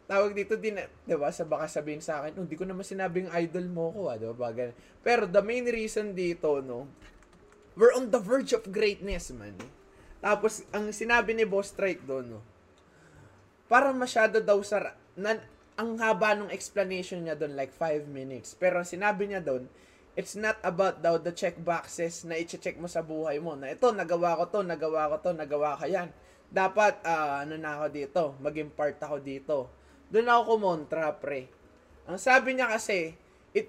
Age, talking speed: 20-39, 180 wpm